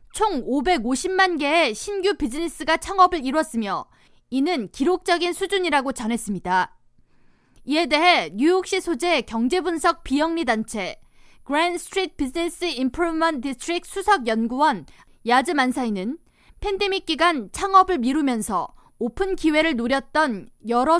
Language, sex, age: Korean, female, 20-39